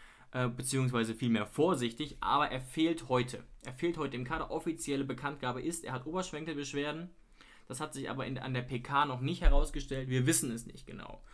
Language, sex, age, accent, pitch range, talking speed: German, male, 20-39, German, 125-150 Hz, 180 wpm